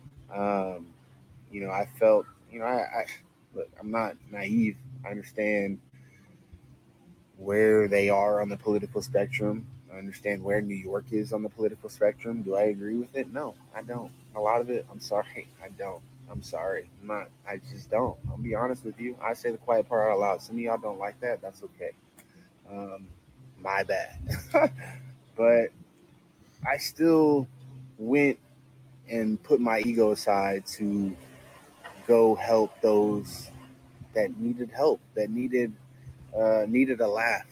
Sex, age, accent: male, 20-39, American